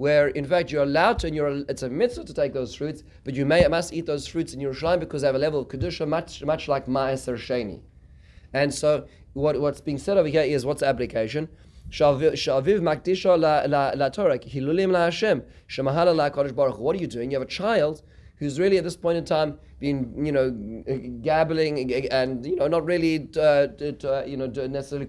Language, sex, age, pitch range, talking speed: English, male, 30-49, 135-165 Hz, 205 wpm